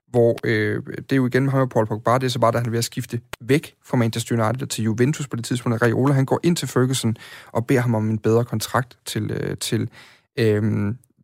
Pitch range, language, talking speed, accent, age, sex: 115-135 Hz, Danish, 235 wpm, native, 30-49, male